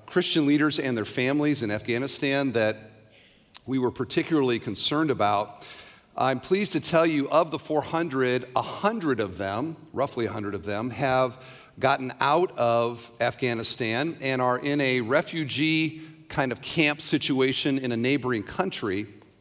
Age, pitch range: 50-69, 115-150 Hz